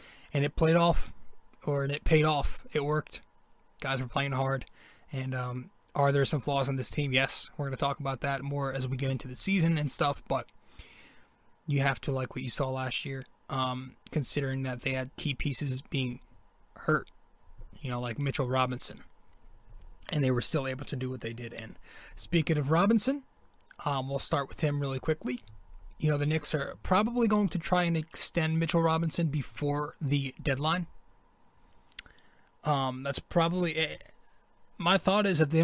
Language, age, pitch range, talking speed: English, 20-39, 130-160 Hz, 180 wpm